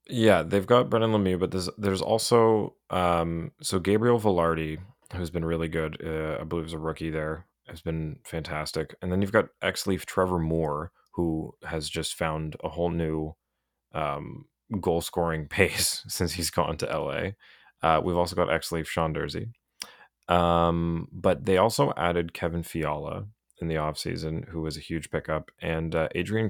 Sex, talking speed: male, 170 wpm